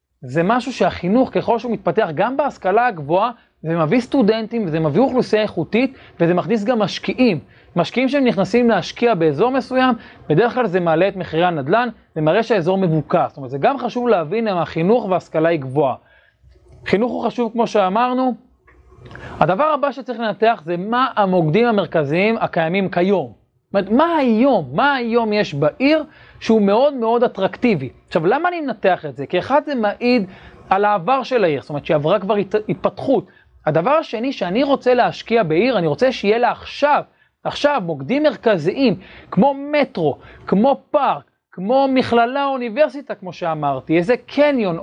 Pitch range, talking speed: 175-250 Hz, 160 wpm